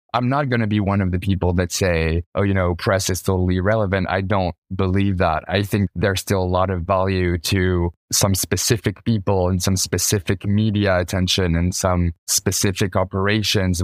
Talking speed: 185 wpm